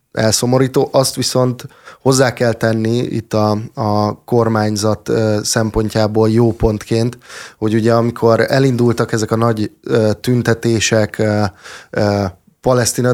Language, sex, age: Hungarian, male, 20-39